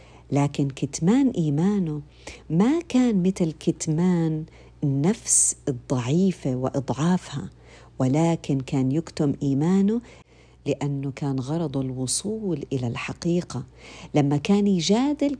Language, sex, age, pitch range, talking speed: Arabic, female, 50-69, 140-195 Hz, 90 wpm